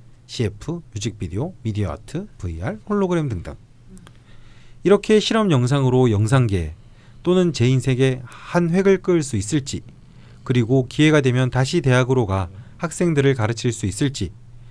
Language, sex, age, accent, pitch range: Korean, male, 30-49, native, 110-145 Hz